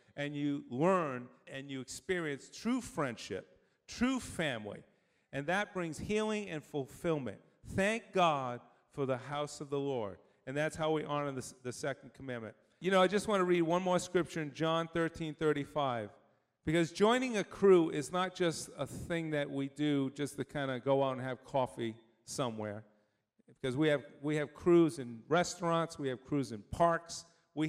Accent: American